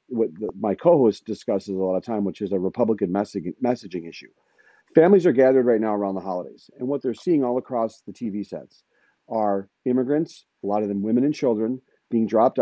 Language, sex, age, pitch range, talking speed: English, male, 40-59, 100-130 Hz, 200 wpm